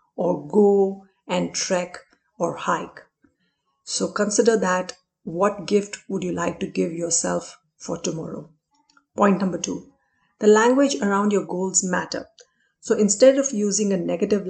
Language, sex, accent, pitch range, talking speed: Hindi, female, native, 185-225 Hz, 140 wpm